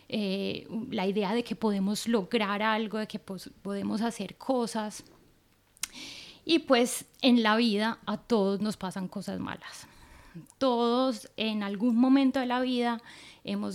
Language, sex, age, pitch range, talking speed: English, female, 10-29, 210-255 Hz, 145 wpm